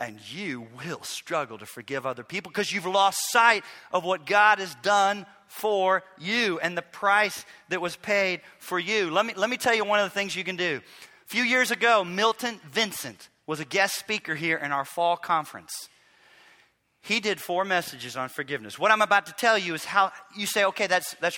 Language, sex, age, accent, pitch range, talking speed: English, male, 40-59, American, 135-195 Hz, 210 wpm